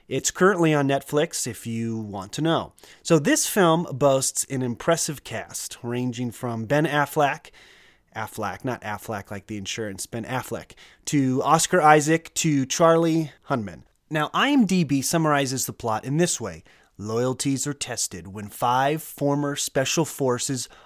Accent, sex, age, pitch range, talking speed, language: American, male, 30-49, 115-165 Hz, 145 wpm, English